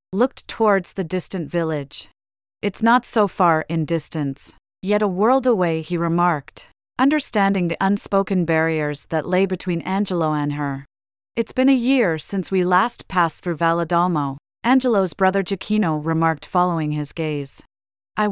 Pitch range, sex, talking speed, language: 155-195 Hz, female, 145 wpm, English